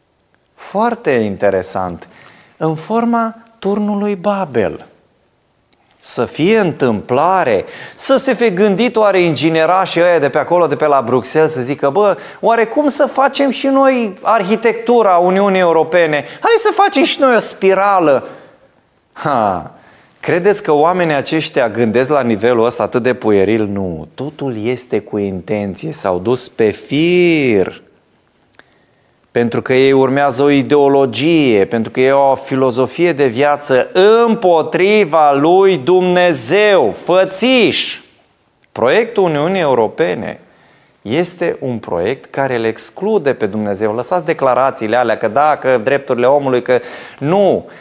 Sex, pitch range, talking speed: male, 125-200 Hz, 125 wpm